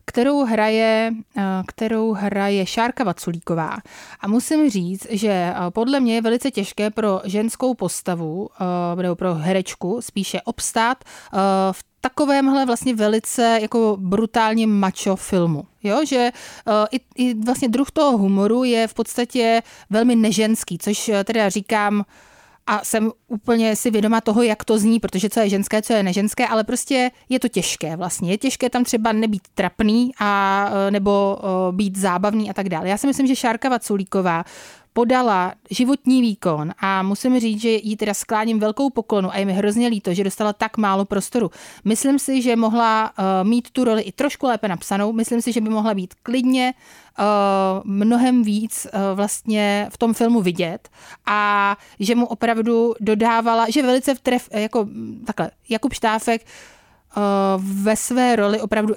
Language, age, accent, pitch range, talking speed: Czech, 30-49, native, 195-235 Hz, 160 wpm